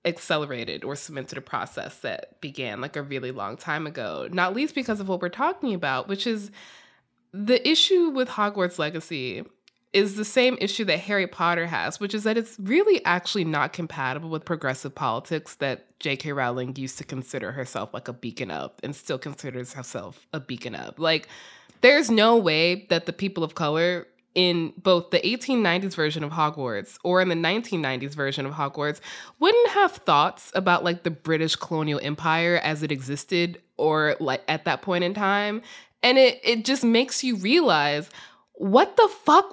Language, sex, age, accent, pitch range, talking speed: English, female, 20-39, American, 155-235 Hz, 180 wpm